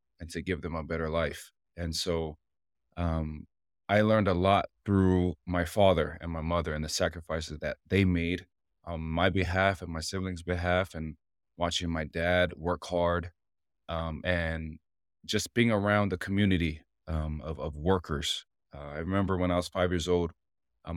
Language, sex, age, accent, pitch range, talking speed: English, male, 30-49, American, 80-95 Hz, 170 wpm